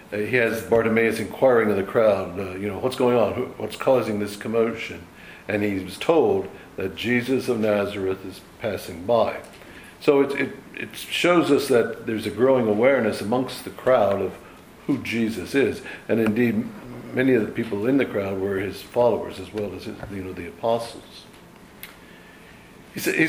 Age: 60-79